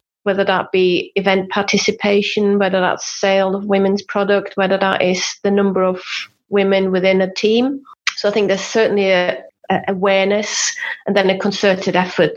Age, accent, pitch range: 30-49, British, 180-205 Hz